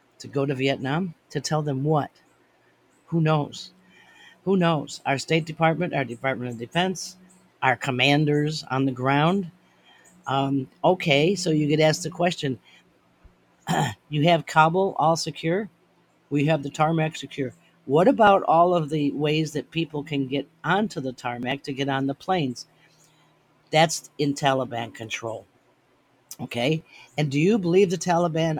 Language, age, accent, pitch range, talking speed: English, 50-69, American, 140-170 Hz, 150 wpm